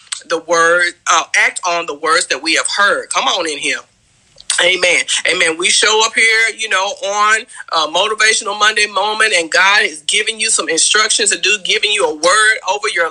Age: 40-59